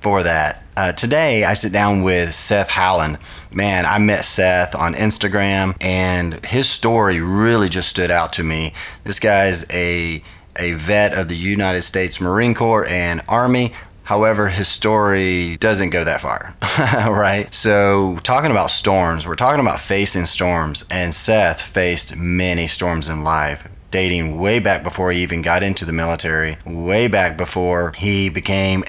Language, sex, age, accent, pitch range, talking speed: English, male, 30-49, American, 85-100 Hz, 160 wpm